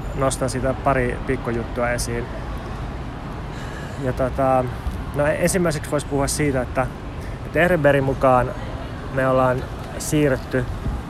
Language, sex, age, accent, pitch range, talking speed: Finnish, male, 20-39, native, 120-140 Hz, 95 wpm